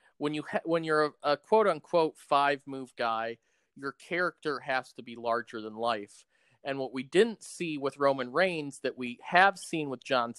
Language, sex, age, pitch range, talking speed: English, male, 40-59, 120-155 Hz, 195 wpm